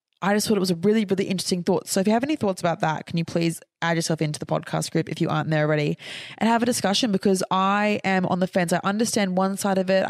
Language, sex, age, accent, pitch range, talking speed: English, female, 20-39, Australian, 160-195 Hz, 285 wpm